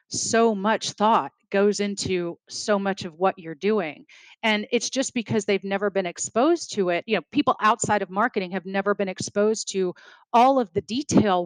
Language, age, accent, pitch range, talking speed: English, 30-49, American, 180-215 Hz, 190 wpm